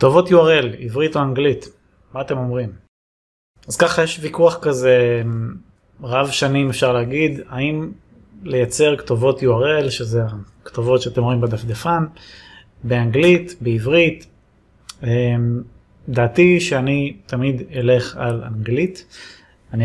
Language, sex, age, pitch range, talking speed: Hebrew, male, 20-39, 120-145 Hz, 105 wpm